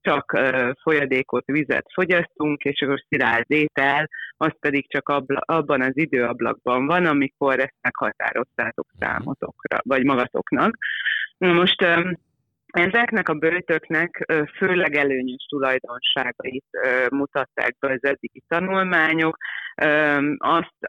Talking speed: 120 wpm